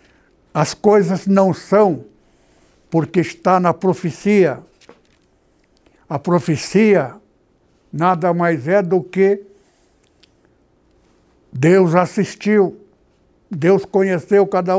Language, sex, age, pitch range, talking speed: Portuguese, male, 60-79, 170-205 Hz, 80 wpm